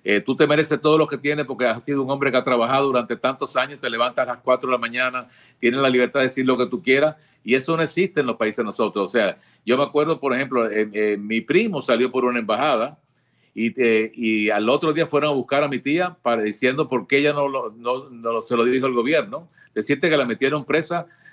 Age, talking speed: 50-69, 255 wpm